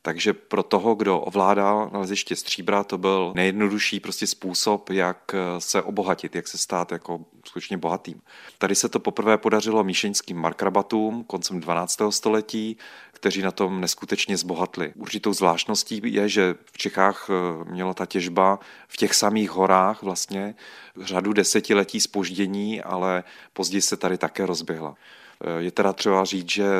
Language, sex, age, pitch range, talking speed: Czech, male, 30-49, 90-100 Hz, 145 wpm